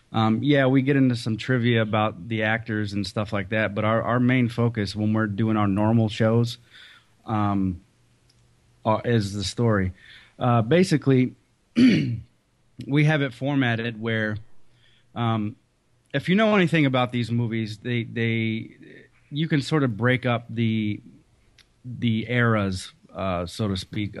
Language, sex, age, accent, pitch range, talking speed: English, male, 30-49, American, 105-120 Hz, 150 wpm